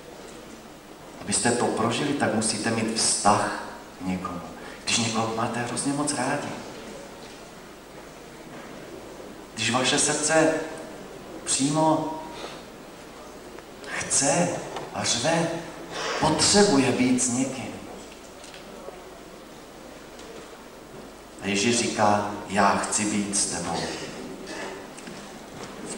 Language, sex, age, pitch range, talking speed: Slovak, male, 40-59, 105-130 Hz, 85 wpm